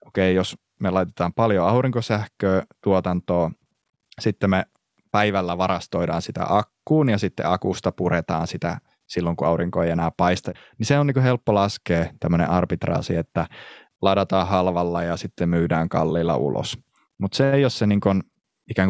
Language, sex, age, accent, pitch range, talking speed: Finnish, male, 20-39, native, 85-105 Hz, 150 wpm